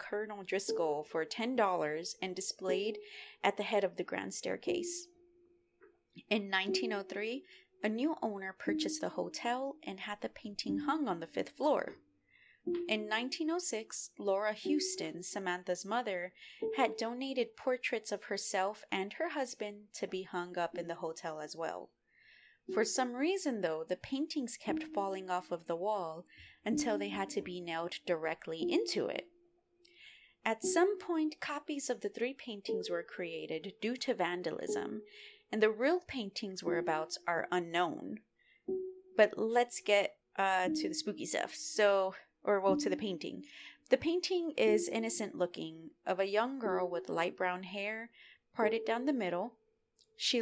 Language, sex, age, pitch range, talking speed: English, female, 20-39, 185-300 Hz, 150 wpm